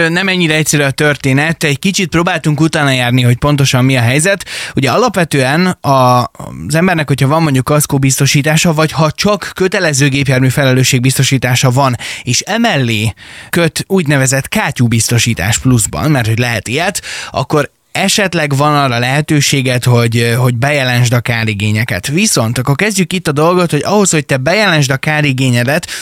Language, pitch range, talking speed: Hungarian, 125-160 Hz, 150 wpm